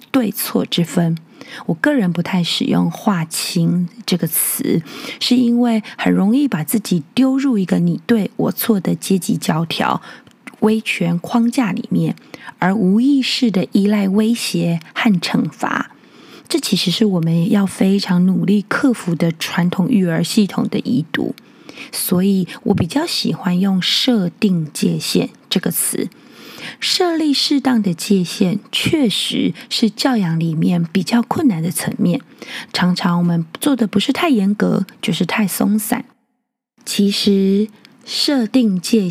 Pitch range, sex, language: 180-240 Hz, female, Chinese